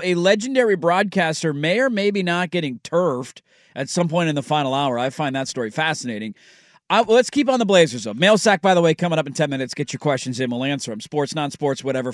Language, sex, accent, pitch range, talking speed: English, male, American, 145-190 Hz, 240 wpm